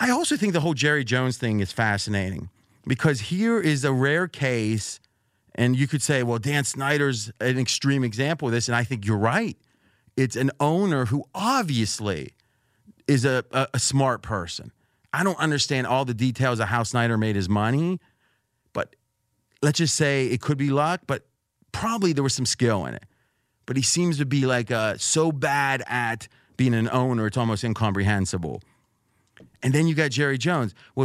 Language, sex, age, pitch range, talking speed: English, male, 30-49, 115-155 Hz, 185 wpm